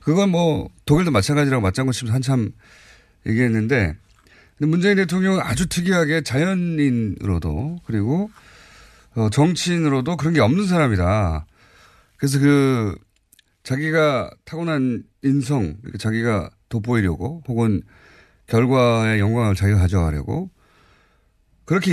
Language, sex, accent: Korean, male, native